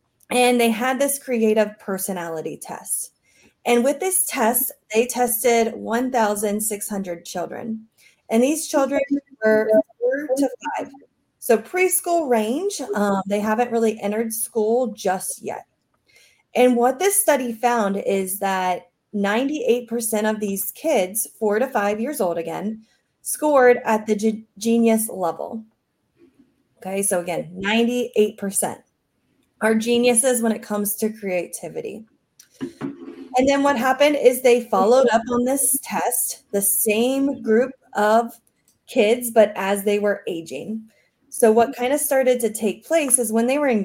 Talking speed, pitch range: 135 wpm, 210-260 Hz